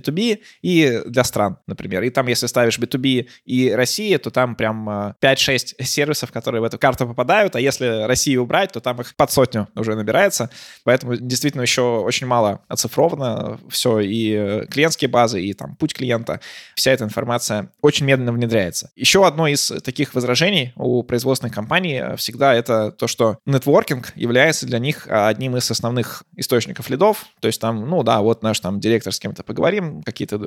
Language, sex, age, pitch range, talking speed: Russian, male, 20-39, 115-140 Hz, 175 wpm